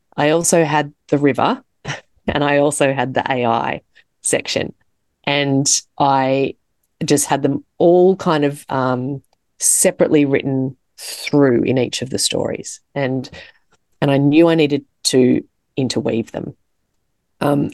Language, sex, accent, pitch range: English, female, Australian, 130-150 Hz